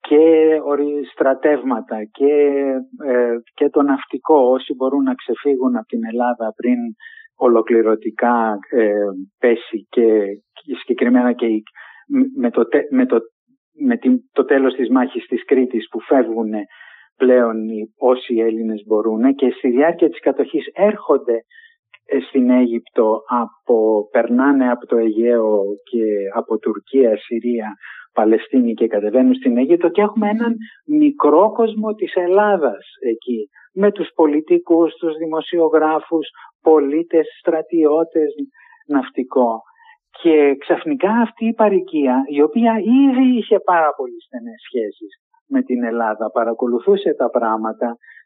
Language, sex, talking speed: Greek, male, 120 wpm